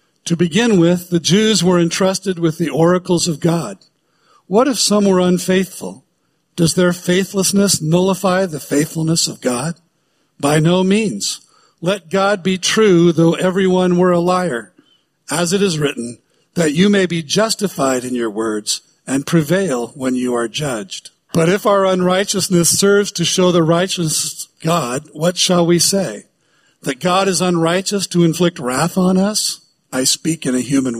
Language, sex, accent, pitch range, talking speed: English, male, American, 155-190 Hz, 160 wpm